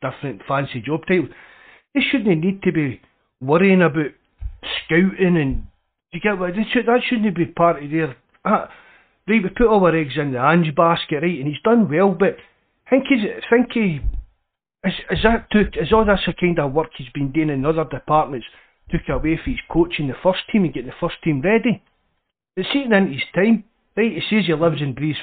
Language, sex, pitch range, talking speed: English, male, 145-200 Hz, 215 wpm